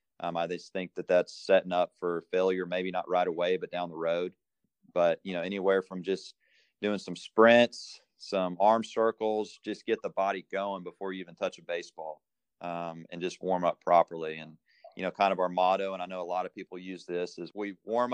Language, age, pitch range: English, 30-49, 90-100 Hz